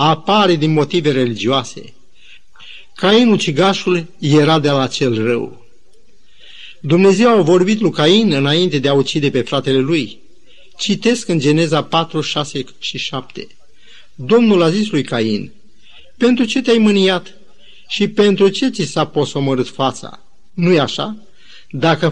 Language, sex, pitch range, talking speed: Romanian, male, 140-185 Hz, 140 wpm